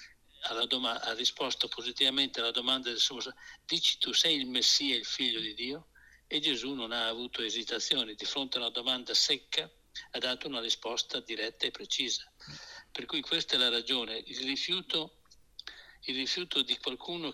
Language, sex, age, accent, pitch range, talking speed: Italian, male, 60-79, native, 120-140 Hz, 165 wpm